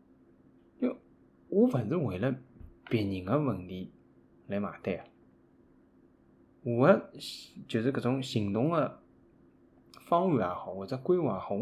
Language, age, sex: Chinese, 20-39, male